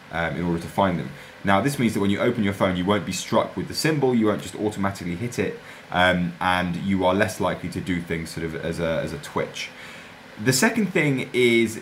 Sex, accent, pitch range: male, British, 85-110 Hz